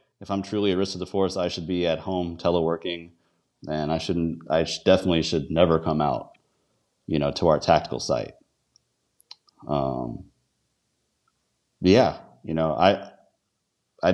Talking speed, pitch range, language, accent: 155 wpm, 80-95 Hz, English, American